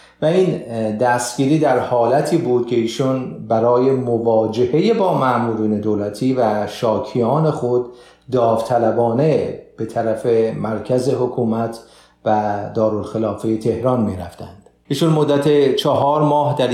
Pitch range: 110-130 Hz